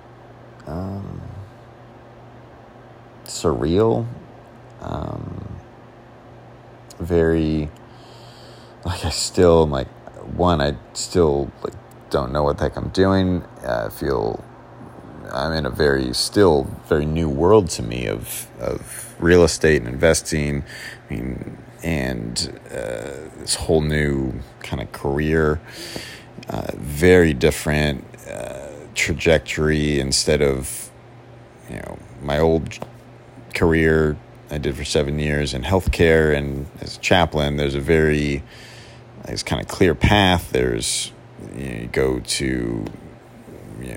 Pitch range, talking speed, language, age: 70-115 Hz, 115 wpm, English, 30-49